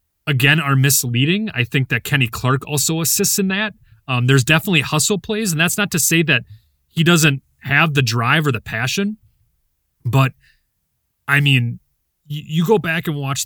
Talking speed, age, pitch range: 180 wpm, 30-49, 125-165 Hz